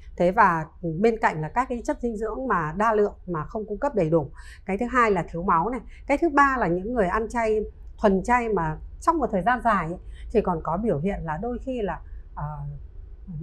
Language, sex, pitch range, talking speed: Vietnamese, female, 175-240 Hz, 230 wpm